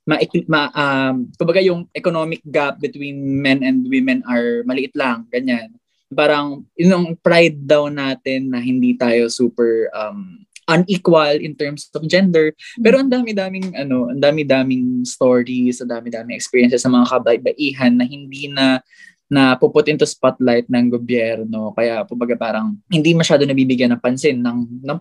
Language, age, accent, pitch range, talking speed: Filipino, 20-39, native, 125-170 Hz, 150 wpm